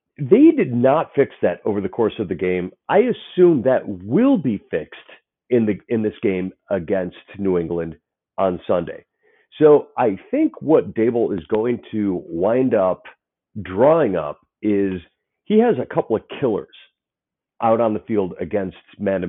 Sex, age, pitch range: male, 40-59, 95-140 Hz